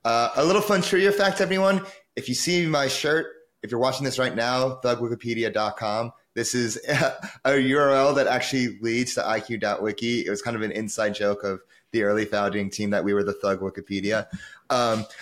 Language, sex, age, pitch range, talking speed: English, male, 30-49, 110-135 Hz, 190 wpm